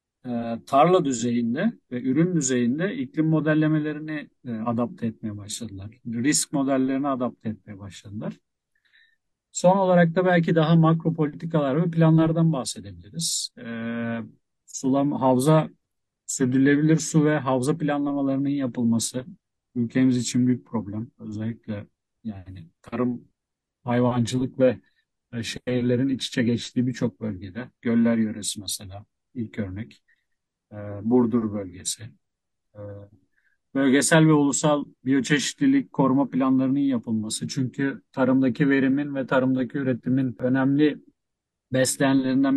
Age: 50-69